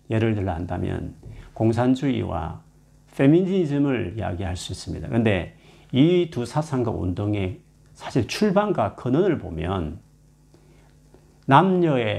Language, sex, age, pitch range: Korean, male, 40-59, 100-145 Hz